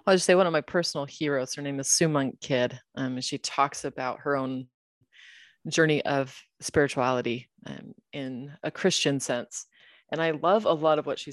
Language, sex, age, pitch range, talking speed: English, female, 30-49, 130-155 Hz, 195 wpm